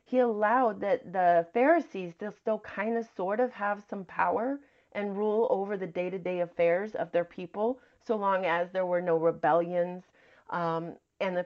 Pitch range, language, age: 175-230 Hz, English, 30-49